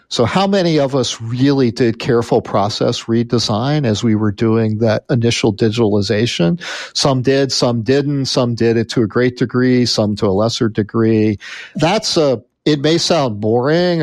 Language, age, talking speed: English, 50-69, 165 wpm